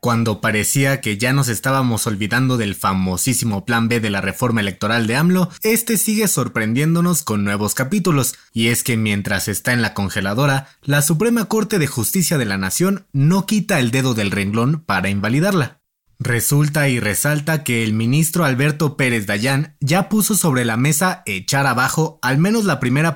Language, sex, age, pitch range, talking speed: Spanish, male, 30-49, 115-155 Hz, 175 wpm